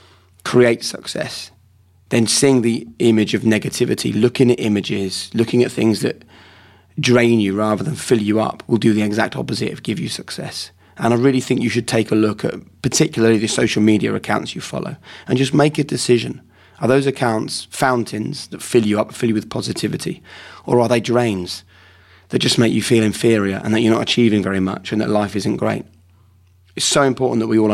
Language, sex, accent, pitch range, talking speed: English, male, British, 95-115 Hz, 200 wpm